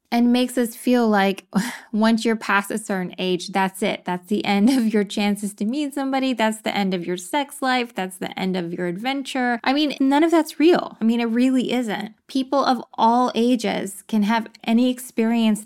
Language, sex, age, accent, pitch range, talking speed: English, female, 20-39, American, 195-245 Hz, 205 wpm